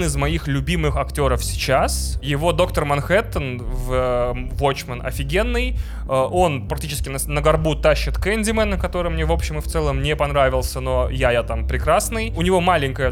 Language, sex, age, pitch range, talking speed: Russian, male, 20-39, 115-150 Hz, 165 wpm